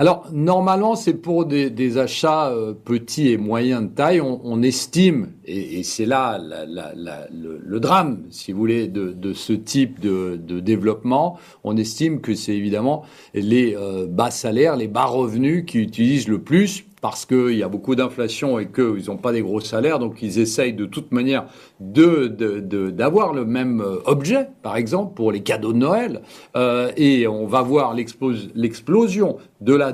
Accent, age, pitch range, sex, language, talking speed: French, 40-59, 110-155 Hz, male, French, 180 wpm